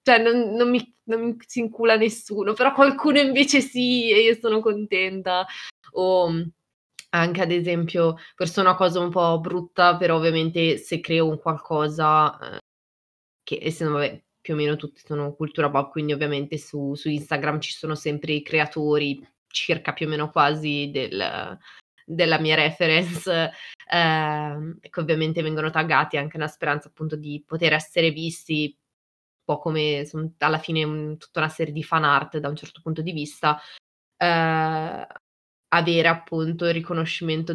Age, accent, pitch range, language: 20-39, native, 155-185 Hz, Italian